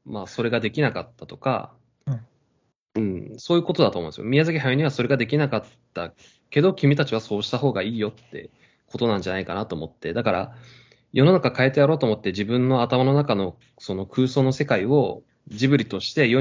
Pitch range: 110-140 Hz